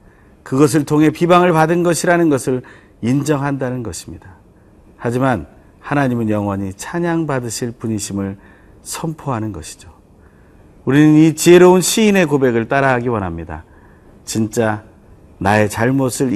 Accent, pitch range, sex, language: native, 100-155 Hz, male, Korean